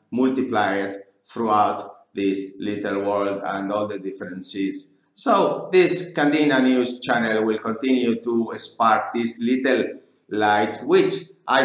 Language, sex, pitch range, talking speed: English, male, 100-130 Hz, 120 wpm